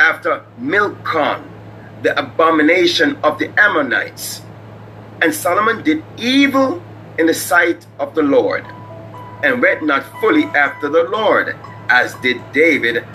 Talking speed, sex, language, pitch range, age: 125 wpm, male, English, 105-175 Hz, 30-49